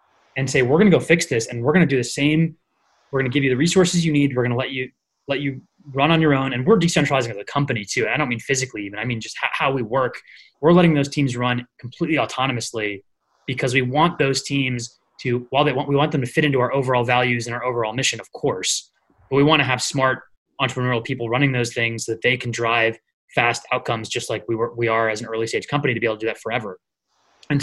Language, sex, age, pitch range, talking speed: English, male, 20-39, 120-150 Hz, 260 wpm